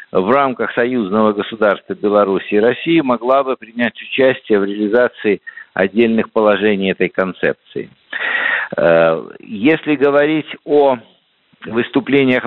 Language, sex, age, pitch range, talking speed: Russian, male, 50-69, 115-145 Hz, 100 wpm